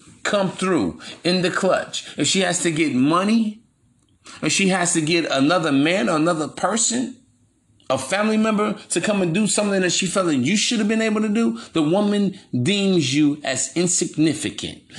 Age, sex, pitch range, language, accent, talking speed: 30-49, male, 140-180 Hz, English, American, 190 wpm